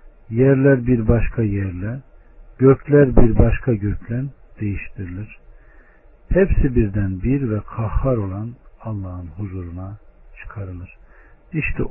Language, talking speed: Turkish, 95 wpm